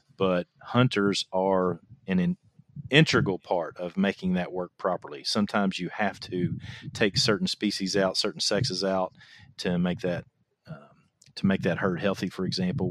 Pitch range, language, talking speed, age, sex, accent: 95-130 Hz, English, 160 wpm, 40-59, male, American